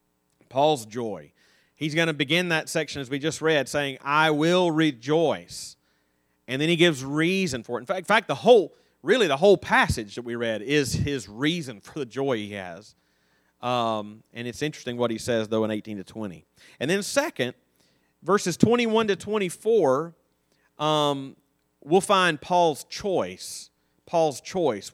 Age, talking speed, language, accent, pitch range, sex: 30-49, 165 wpm, English, American, 110-170 Hz, male